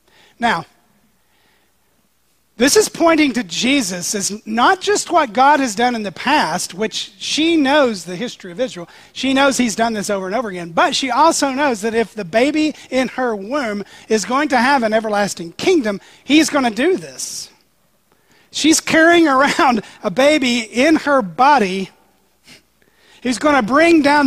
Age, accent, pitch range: 40-59, American, 185-270 Hz